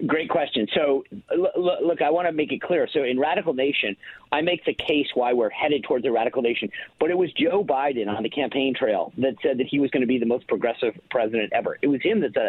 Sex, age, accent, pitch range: male, 50-69, American, 135-175 Hz